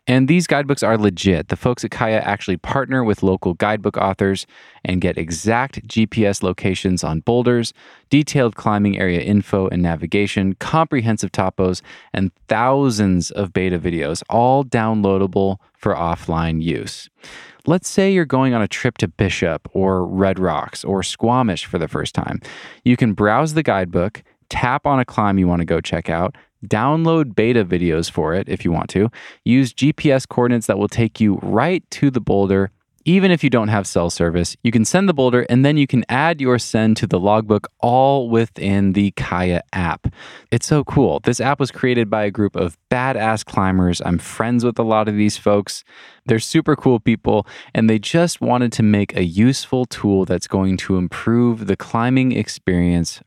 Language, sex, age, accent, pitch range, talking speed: English, male, 20-39, American, 95-125 Hz, 180 wpm